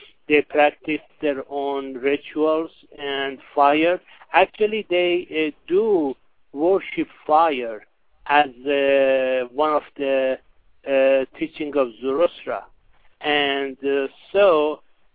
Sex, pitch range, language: male, 130-155 Hz, English